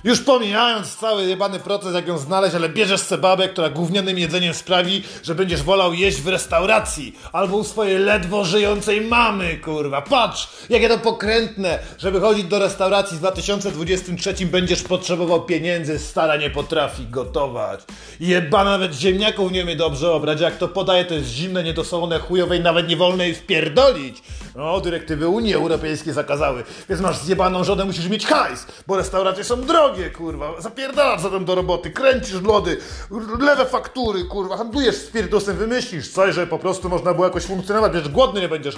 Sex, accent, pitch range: male, native, 175-210 Hz